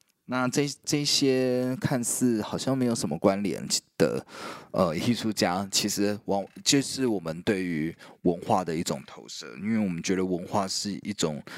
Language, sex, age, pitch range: Chinese, male, 20-39, 90-120 Hz